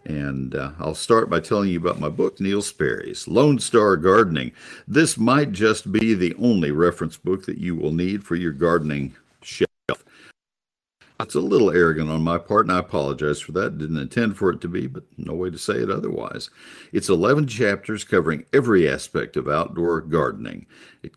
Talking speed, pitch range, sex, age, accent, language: 185 wpm, 75-105 Hz, male, 60-79, American, English